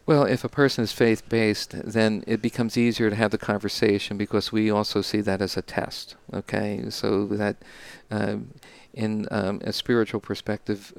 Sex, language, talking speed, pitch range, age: male, English, 170 wpm, 105-120 Hz, 50-69